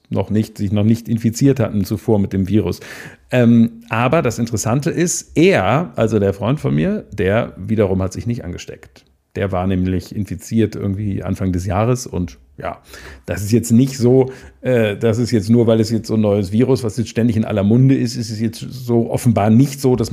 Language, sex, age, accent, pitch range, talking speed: German, male, 50-69, German, 105-130 Hz, 210 wpm